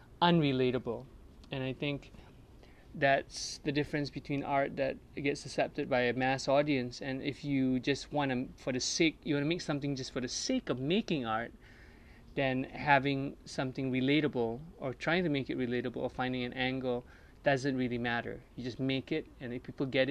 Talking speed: 185 wpm